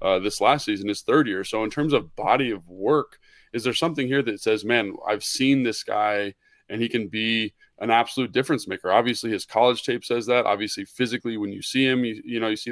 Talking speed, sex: 235 wpm, male